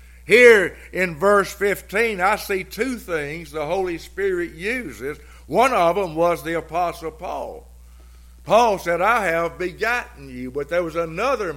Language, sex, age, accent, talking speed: English, male, 60-79, American, 150 wpm